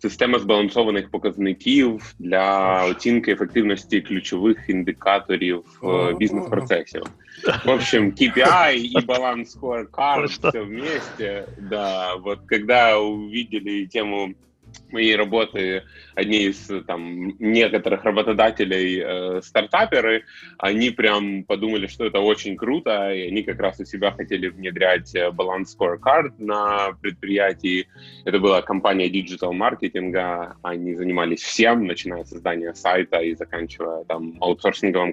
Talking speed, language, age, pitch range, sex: 110 wpm, Russian, 20-39, 90-110 Hz, male